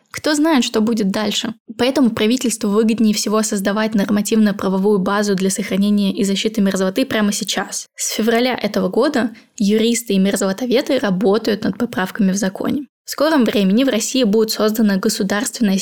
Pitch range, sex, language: 205-235 Hz, female, Russian